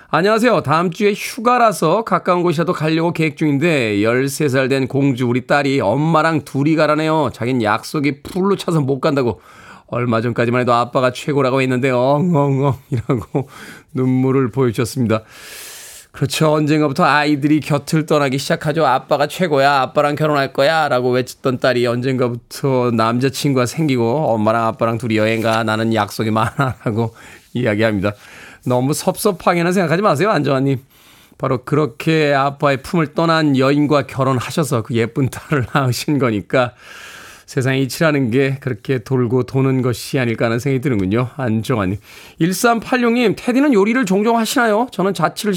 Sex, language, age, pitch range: male, Korean, 20-39, 125-170 Hz